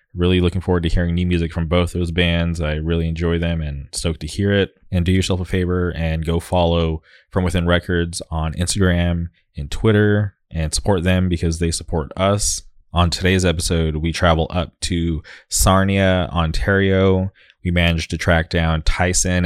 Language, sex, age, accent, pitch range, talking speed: English, male, 20-39, American, 80-90 Hz, 175 wpm